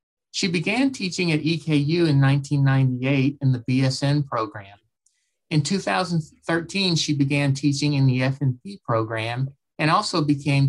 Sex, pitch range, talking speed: male, 130-160 Hz, 130 wpm